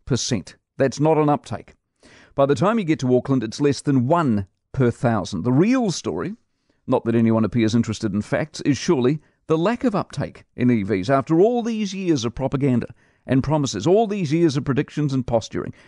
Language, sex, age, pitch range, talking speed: English, male, 50-69, 120-160 Hz, 195 wpm